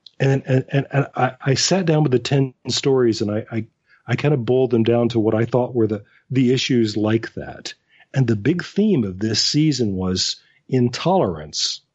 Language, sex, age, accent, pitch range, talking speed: English, male, 40-59, American, 110-140 Hz, 200 wpm